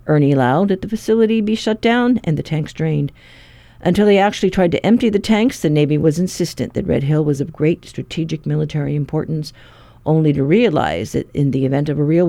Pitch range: 140-180 Hz